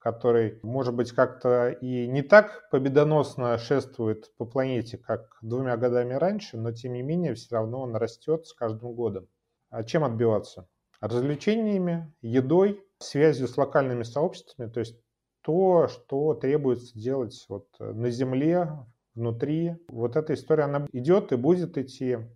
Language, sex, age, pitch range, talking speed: Russian, male, 30-49, 115-150 Hz, 140 wpm